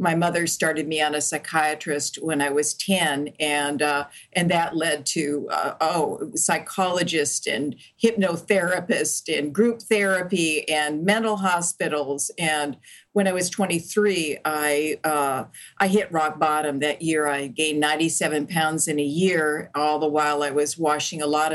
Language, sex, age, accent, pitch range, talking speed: English, female, 50-69, American, 150-195 Hz, 155 wpm